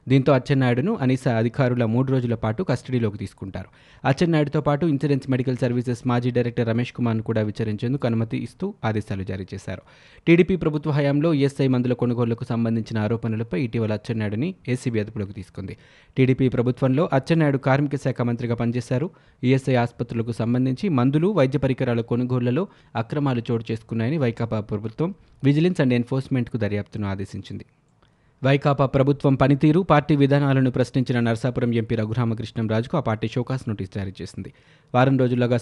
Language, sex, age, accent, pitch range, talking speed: Telugu, male, 20-39, native, 115-135 Hz, 135 wpm